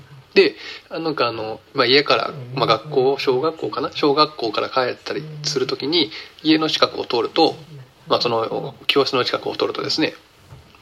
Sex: male